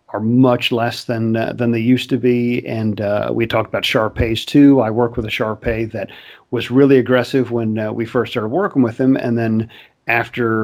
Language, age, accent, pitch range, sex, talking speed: English, 50-69, American, 110-130 Hz, male, 210 wpm